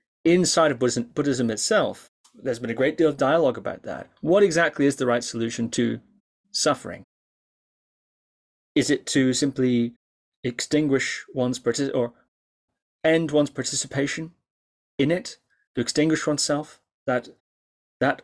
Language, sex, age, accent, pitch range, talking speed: English, male, 30-49, British, 120-160 Hz, 130 wpm